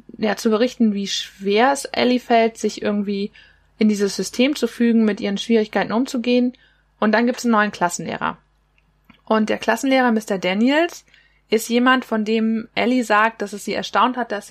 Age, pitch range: 20-39, 205-240 Hz